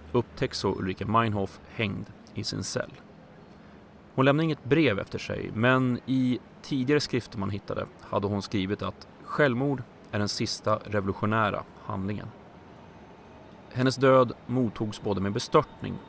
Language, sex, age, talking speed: Swedish, male, 30-49, 135 wpm